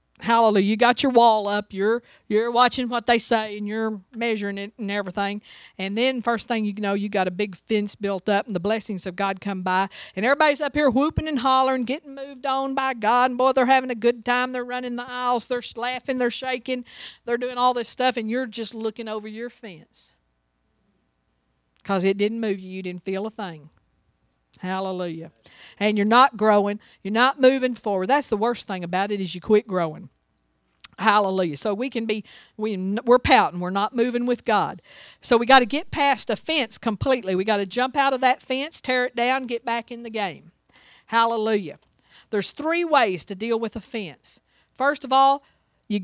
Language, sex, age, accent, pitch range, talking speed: English, female, 50-69, American, 200-250 Hz, 205 wpm